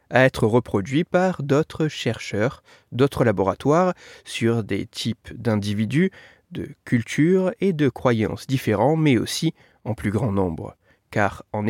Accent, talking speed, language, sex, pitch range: French, 135 wpm, French, male, 110-165 Hz